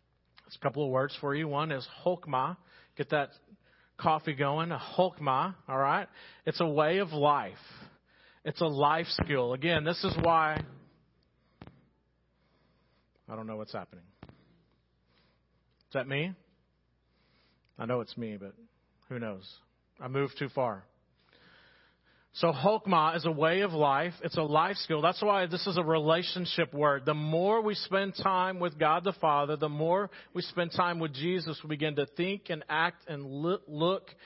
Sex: male